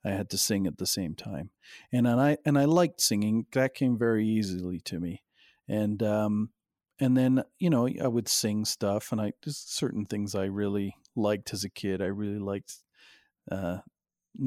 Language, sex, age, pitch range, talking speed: English, male, 40-59, 105-130 Hz, 190 wpm